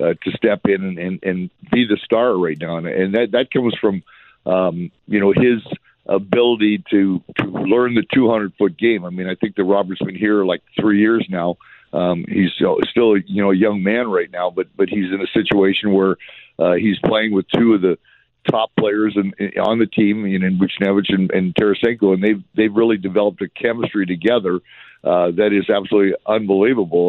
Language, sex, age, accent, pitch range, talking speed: English, male, 60-79, American, 95-110 Hz, 210 wpm